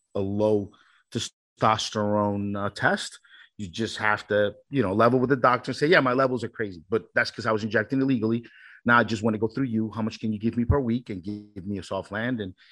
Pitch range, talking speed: 100-125 Hz, 250 wpm